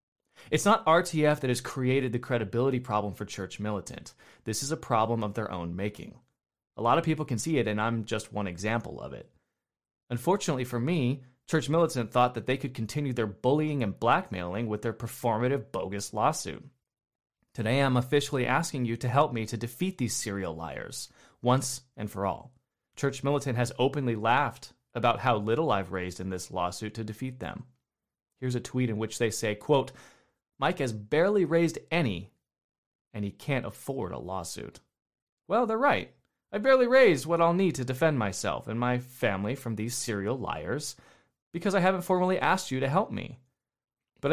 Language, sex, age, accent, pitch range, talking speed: English, male, 30-49, American, 110-150 Hz, 180 wpm